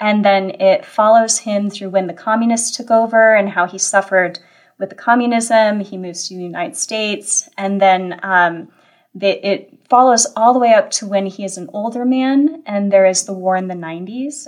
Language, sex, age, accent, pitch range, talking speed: English, female, 20-39, American, 195-250 Hz, 200 wpm